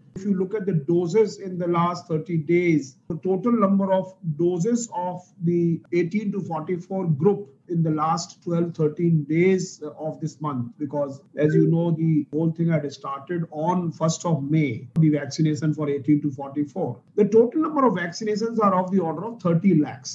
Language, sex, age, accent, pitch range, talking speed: English, male, 50-69, Indian, 170-225 Hz, 185 wpm